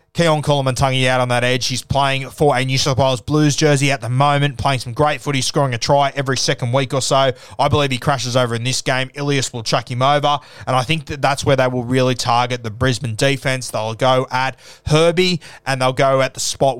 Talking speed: 235 wpm